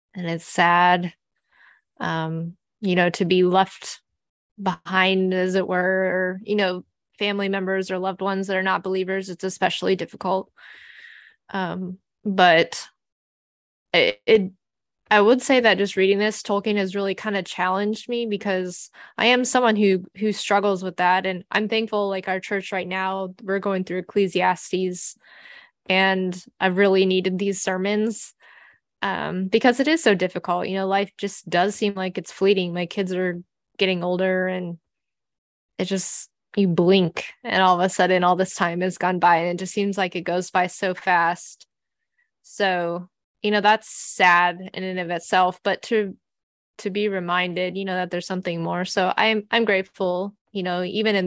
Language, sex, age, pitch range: English, female, 10-29, 180-200 Hz